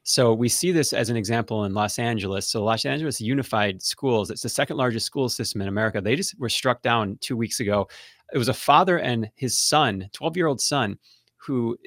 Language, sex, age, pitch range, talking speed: English, male, 30-49, 110-145 Hz, 220 wpm